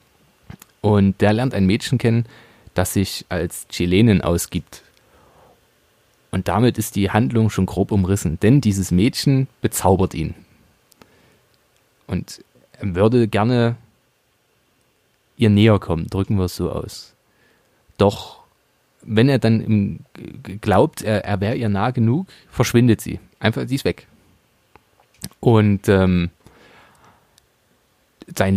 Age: 30-49